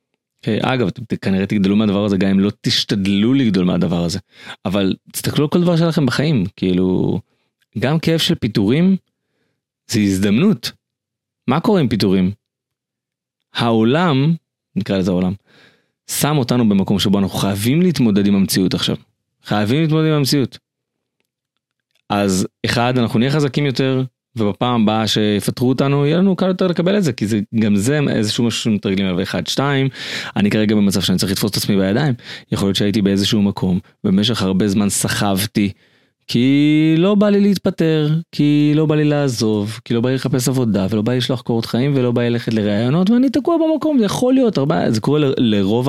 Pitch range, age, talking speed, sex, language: 105-150 Hz, 30-49, 175 wpm, male, Hebrew